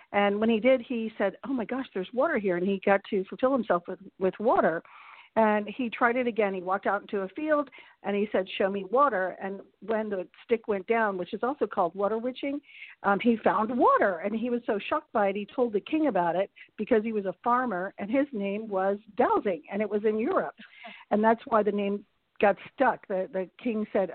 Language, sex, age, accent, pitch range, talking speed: English, female, 50-69, American, 205-250 Hz, 230 wpm